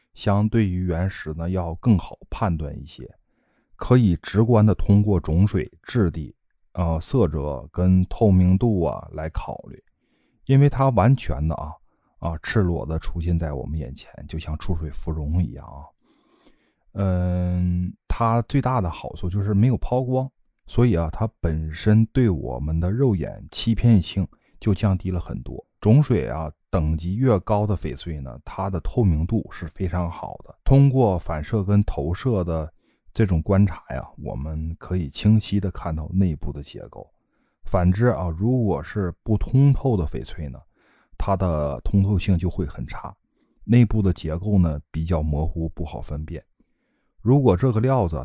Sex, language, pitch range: male, Chinese, 80-105 Hz